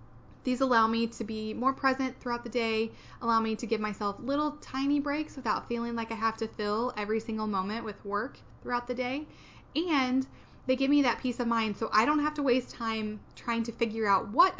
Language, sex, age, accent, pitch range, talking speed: English, female, 10-29, American, 220-265 Hz, 220 wpm